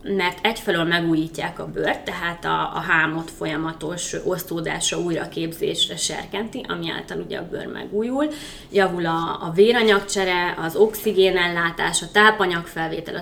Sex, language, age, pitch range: female, Hungarian, 20-39, 170-205 Hz